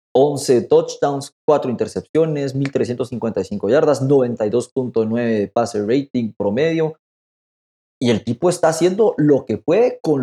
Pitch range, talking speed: 110-185 Hz, 115 wpm